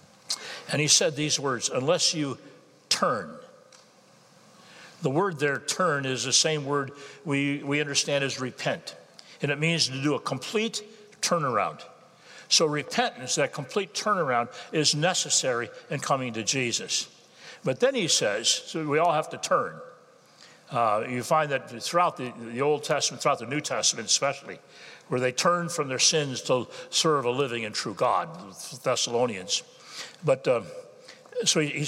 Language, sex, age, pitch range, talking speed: English, male, 60-79, 140-195 Hz, 155 wpm